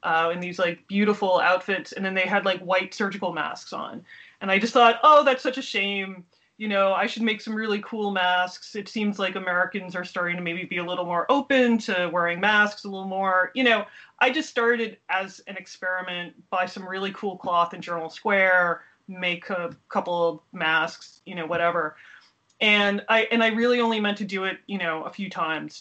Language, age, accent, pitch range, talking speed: English, 30-49, American, 175-210 Hz, 210 wpm